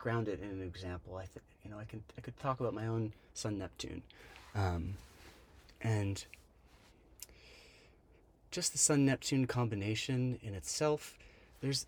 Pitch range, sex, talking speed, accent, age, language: 90-125 Hz, male, 140 wpm, American, 30-49, English